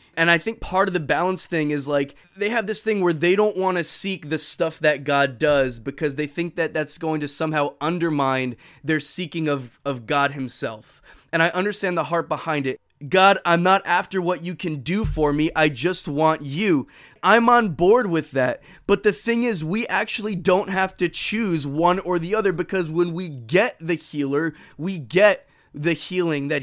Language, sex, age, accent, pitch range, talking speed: English, male, 20-39, American, 155-195 Hz, 205 wpm